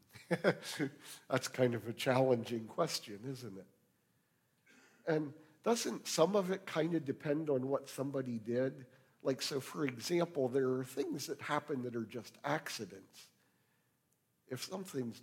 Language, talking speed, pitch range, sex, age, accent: English, 140 wpm, 110-135 Hz, male, 50-69, American